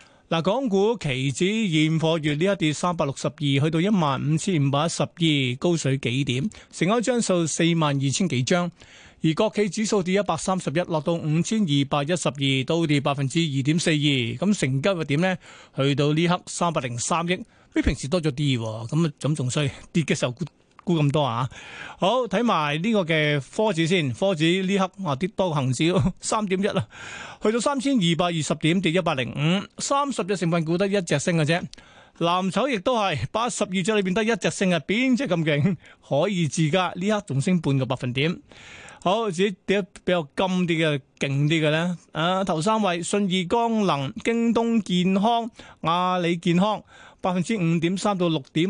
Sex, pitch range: male, 150-195 Hz